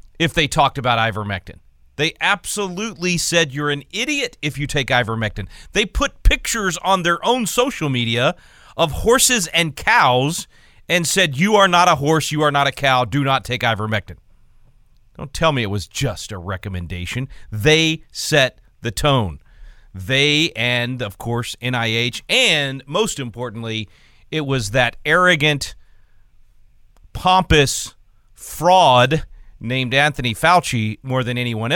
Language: English